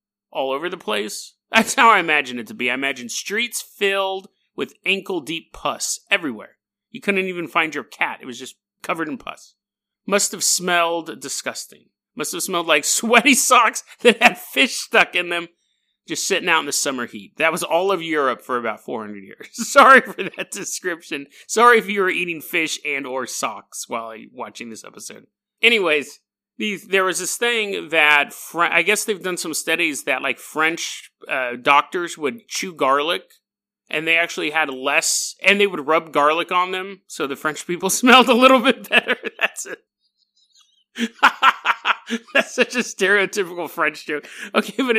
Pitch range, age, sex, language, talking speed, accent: 150-215 Hz, 30-49, male, English, 175 wpm, American